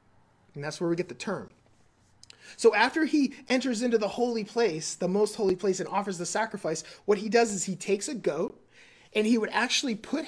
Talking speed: 210 wpm